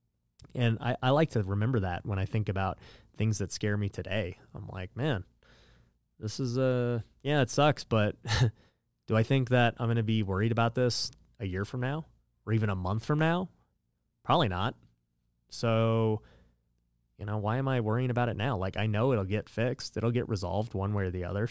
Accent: American